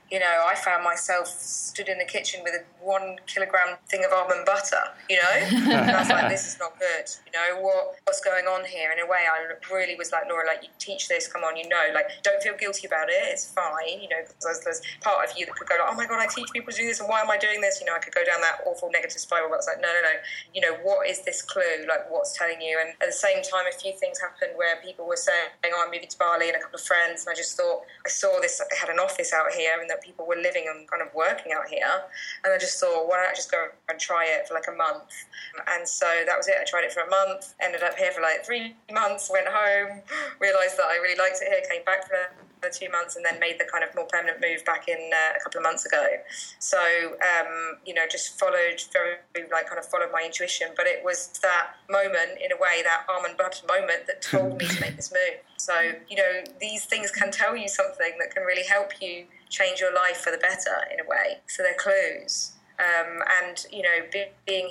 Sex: female